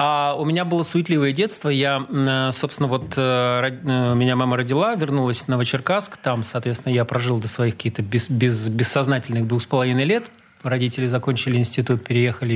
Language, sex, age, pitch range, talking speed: Russian, male, 30-49, 120-155 Hz, 160 wpm